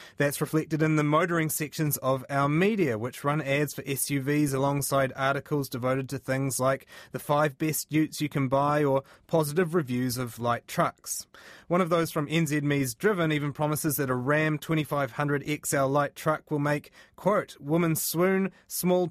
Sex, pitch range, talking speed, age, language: male, 130-160 Hz, 165 wpm, 30-49, English